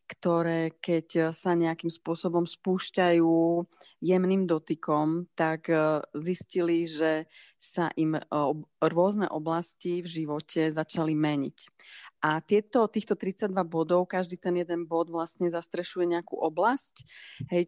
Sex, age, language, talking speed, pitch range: female, 30-49, Czech, 110 wpm, 160-180 Hz